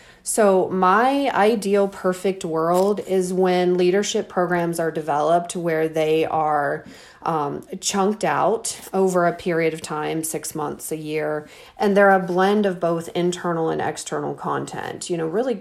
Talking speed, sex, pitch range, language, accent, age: 150 wpm, female, 170-205 Hz, English, American, 40-59